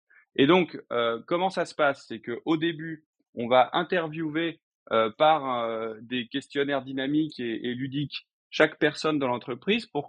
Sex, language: male, French